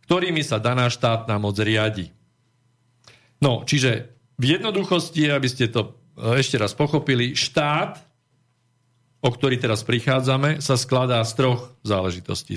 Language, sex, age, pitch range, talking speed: Slovak, male, 50-69, 110-135 Hz, 125 wpm